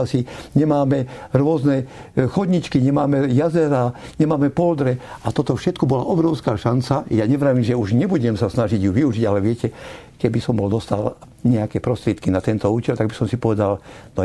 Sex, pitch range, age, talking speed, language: male, 115-140 Hz, 60-79, 170 wpm, Slovak